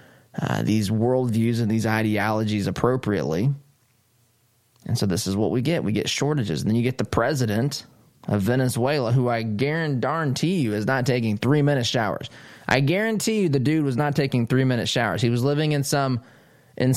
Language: English